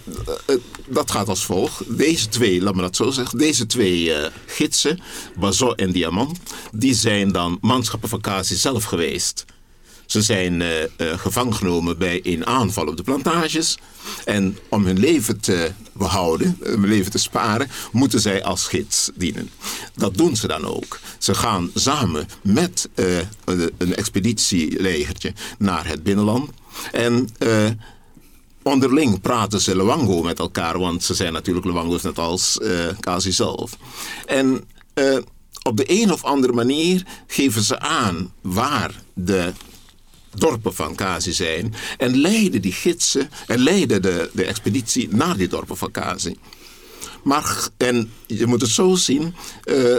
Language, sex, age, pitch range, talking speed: Dutch, male, 60-79, 95-125 Hz, 150 wpm